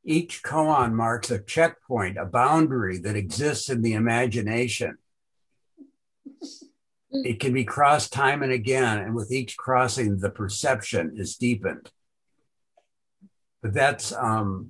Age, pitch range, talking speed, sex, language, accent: 60-79, 110-135 Hz, 125 wpm, male, English, American